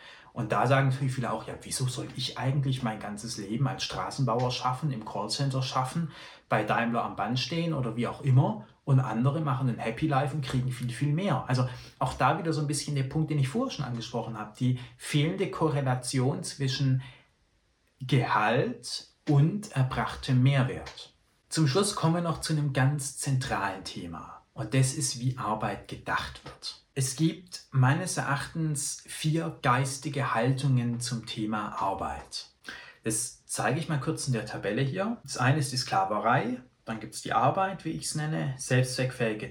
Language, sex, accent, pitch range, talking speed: German, male, German, 125-150 Hz, 170 wpm